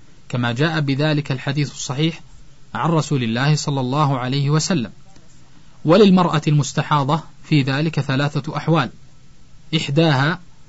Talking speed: 105 wpm